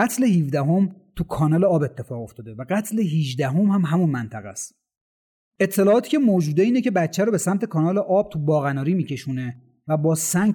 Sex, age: male, 30-49